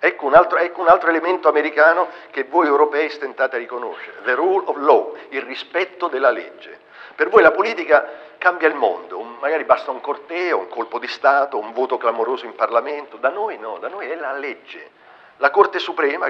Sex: male